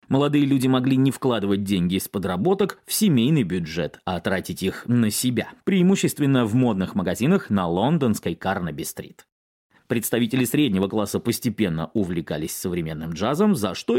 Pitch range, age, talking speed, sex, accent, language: 105-170 Hz, 30-49, 135 wpm, male, native, Russian